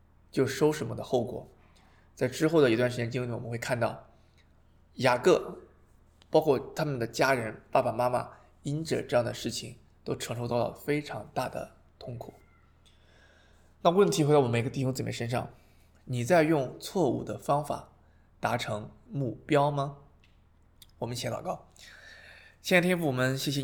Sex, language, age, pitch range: male, Chinese, 20-39, 105-125 Hz